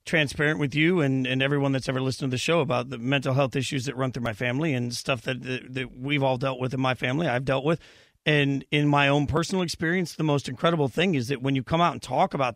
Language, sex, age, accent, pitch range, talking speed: English, male, 40-59, American, 135-160 Hz, 270 wpm